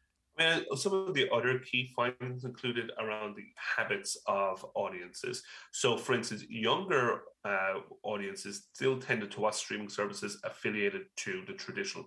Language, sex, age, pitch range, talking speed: English, male, 30-49, 105-135 Hz, 140 wpm